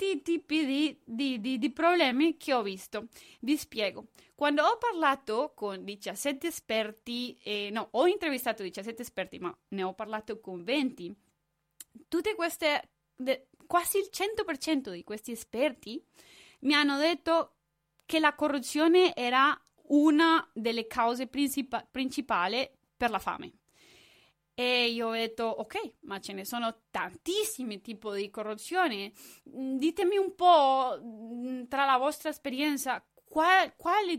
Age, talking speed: 20-39, 120 wpm